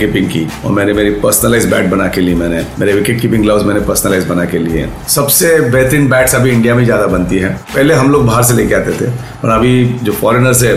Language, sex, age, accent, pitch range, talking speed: Hindi, male, 40-59, native, 105-130 Hz, 210 wpm